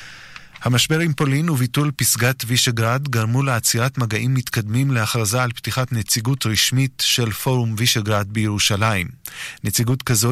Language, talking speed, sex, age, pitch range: Hebrew, 120 wpm, male, 20-39, 105-125 Hz